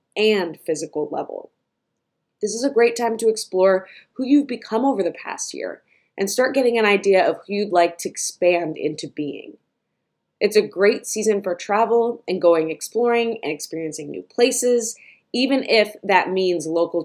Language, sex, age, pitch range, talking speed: English, female, 20-39, 170-235 Hz, 170 wpm